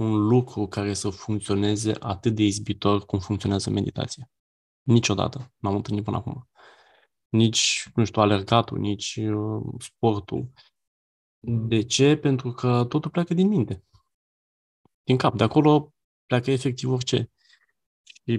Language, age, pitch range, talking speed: Romanian, 20-39, 110-125 Hz, 125 wpm